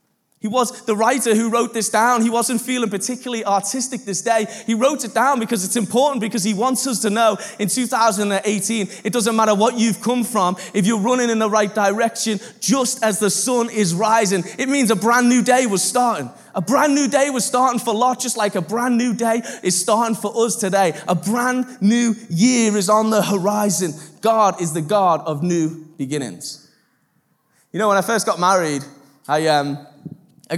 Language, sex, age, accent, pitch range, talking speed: English, male, 20-39, British, 175-230 Hz, 200 wpm